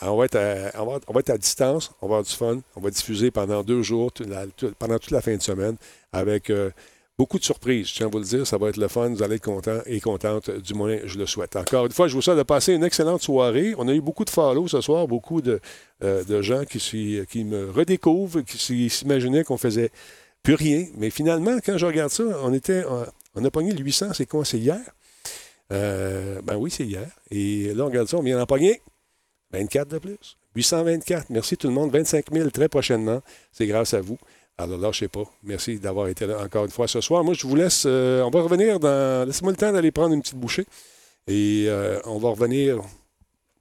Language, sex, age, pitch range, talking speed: French, male, 50-69, 105-155 Hz, 240 wpm